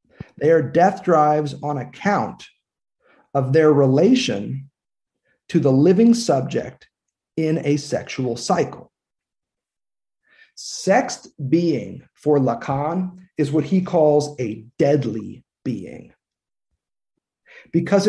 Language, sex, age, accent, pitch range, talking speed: English, male, 50-69, American, 135-190 Hz, 95 wpm